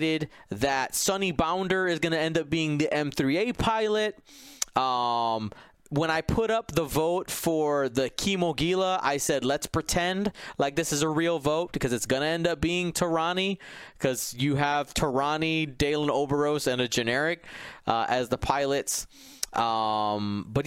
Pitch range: 130-180 Hz